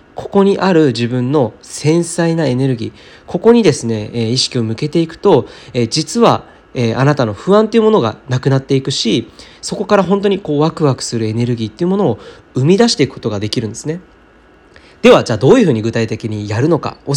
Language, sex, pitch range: Japanese, male, 115-195 Hz